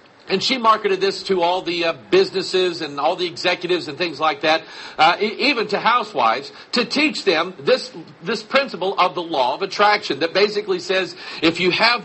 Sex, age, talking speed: male, 50-69, 190 wpm